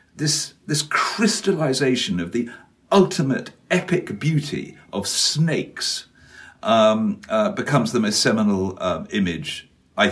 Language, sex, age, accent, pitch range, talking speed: English, male, 60-79, British, 135-185 Hz, 115 wpm